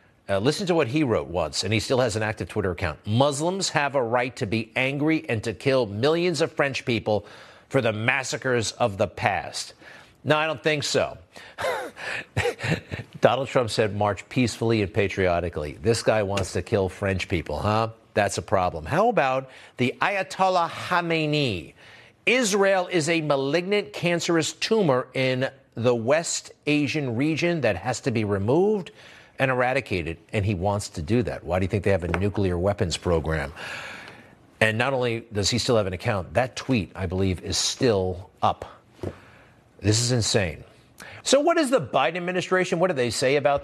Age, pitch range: 50-69, 105-150 Hz